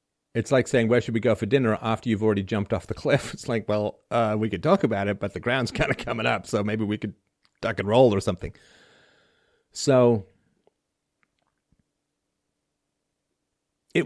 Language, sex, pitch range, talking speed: English, male, 100-135 Hz, 185 wpm